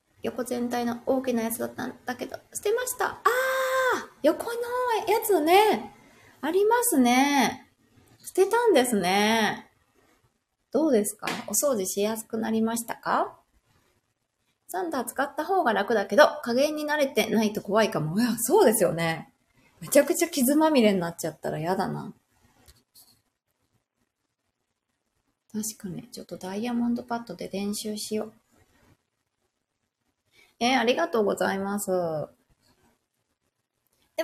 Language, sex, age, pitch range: Japanese, female, 20-39, 205-295 Hz